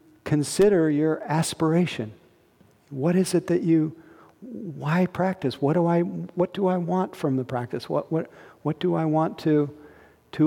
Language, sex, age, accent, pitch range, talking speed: English, male, 50-69, American, 135-170 Hz, 160 wpm